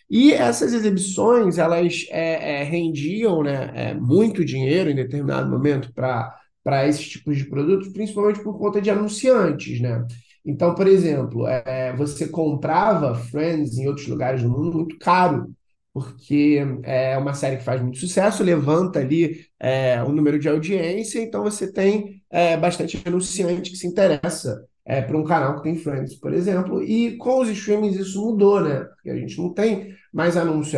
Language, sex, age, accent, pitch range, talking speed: Portuguese, male, 20-39, Brazilian, 150-195 Hz, 170 wpm